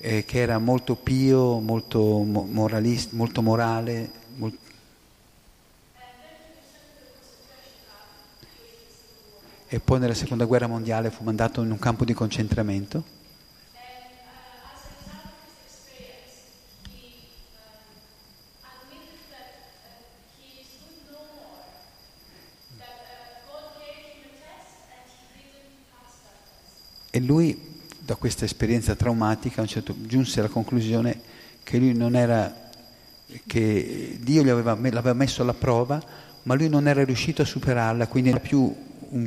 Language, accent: Italian, native